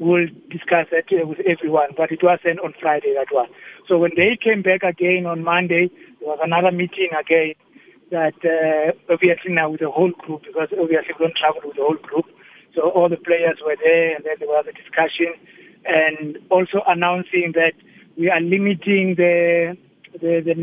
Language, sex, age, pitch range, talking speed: English, male, 60-79, 165-190 Hz, 185 wpm